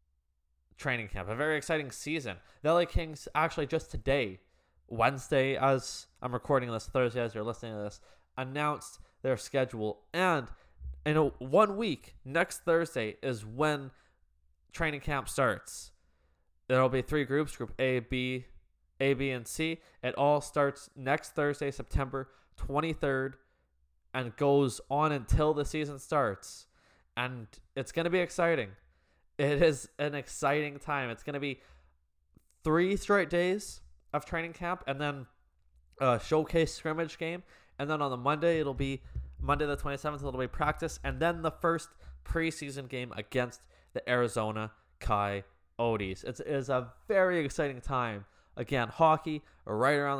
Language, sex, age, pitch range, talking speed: English, male, 20-39, 105-150 Hz, 150 wpm